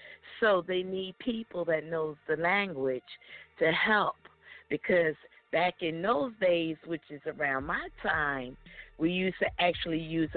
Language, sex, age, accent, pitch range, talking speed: English, female, 50-69, American, 160-205 Hz, 145 wpm